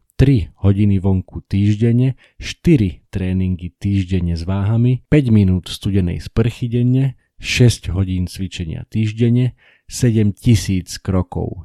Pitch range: 90-115 Hz